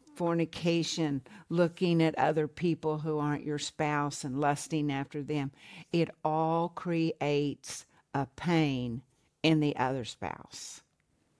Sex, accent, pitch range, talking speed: female, American, 135-160 Hz, 115 wpm